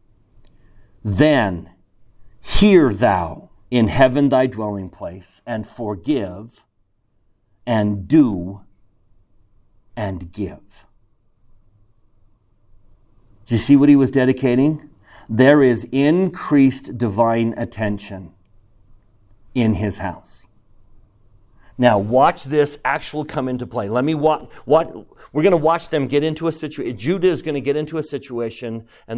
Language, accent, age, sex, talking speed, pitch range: English, American, 50-69, male, 120 wpm, 105-140 Hz